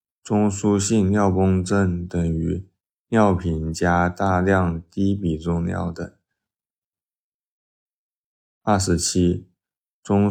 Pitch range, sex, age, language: 85-95 Hz, male, 20-39, Chinese